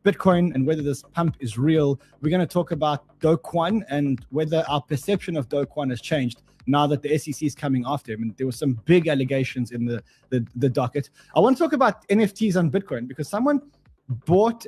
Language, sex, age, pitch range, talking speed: English, male, 20-39, 130-165 Hz, 215 wpm